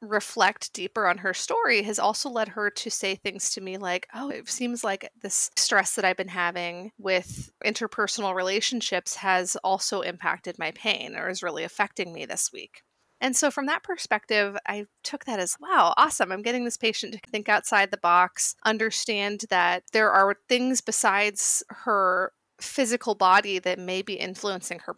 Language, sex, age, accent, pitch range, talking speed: English, female, 30-49, American, 185-230 Hz, 180 wpm